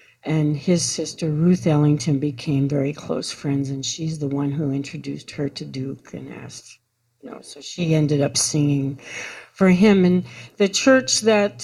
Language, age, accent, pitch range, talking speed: English, 60-79, American, 145-175 Hz, 170 wpm